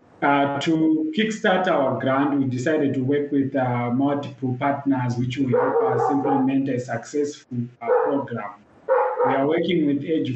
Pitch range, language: 135-175 Hz, English